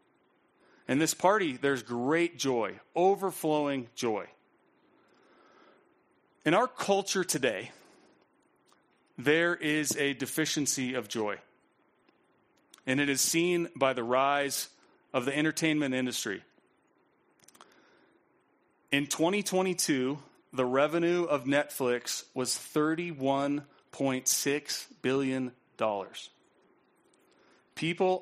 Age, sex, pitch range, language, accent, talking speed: 30-49, male, 130-165 Hz, English, American, 85 wpm